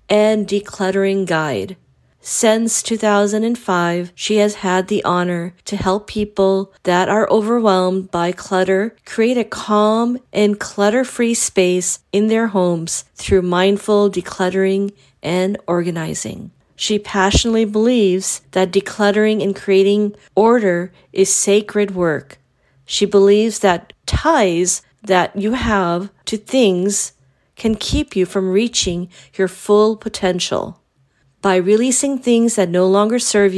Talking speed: 120 wpm